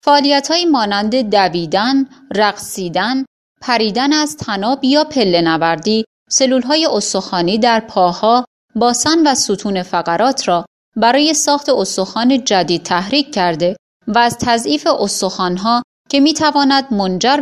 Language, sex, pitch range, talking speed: Persian, female, 180-260 Hz, 110 wpm